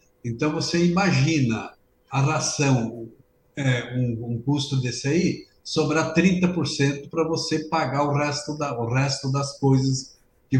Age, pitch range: 60-79, 130-175 Hz